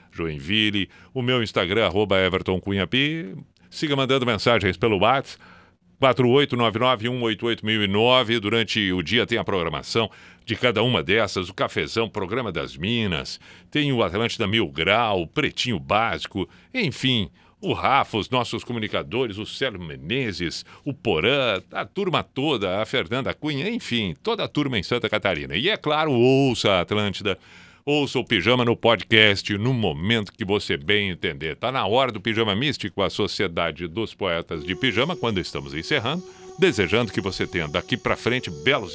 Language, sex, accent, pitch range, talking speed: Portuguese, male, Brazilian, 100-145 Hz, 155 wpm